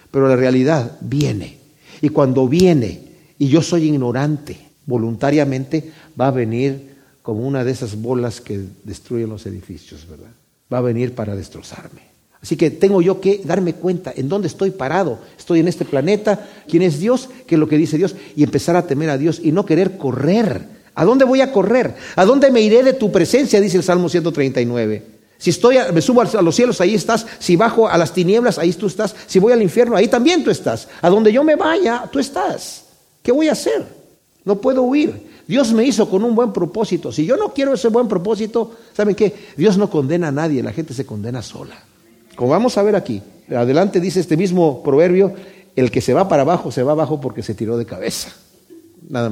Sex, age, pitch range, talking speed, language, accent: male, 50-69, 130-205 Hz, 205 wpm, Spanish, Mexican